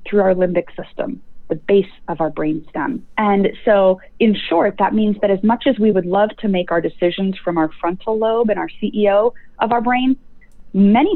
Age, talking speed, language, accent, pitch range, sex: 30-49, 200 wpm, English, American, 180-235 Hz, female